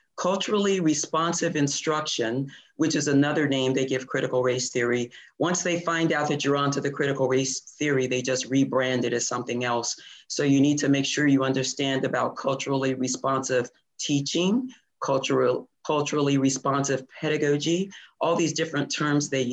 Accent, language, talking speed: American, English, 155 wpm